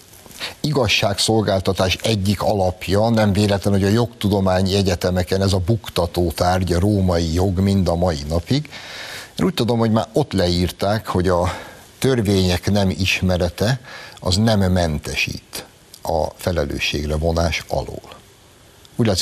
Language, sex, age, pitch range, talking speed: Hungarian, male, 60-79, 90-110 Hz, 120 wpm